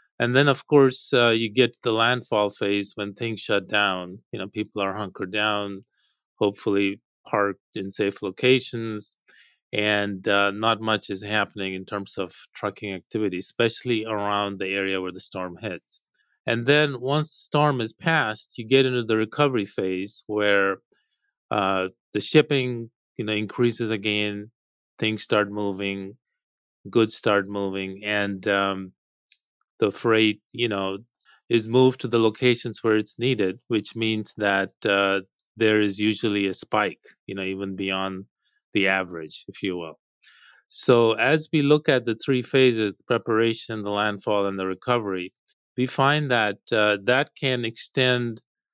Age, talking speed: 30-49, 150 wpm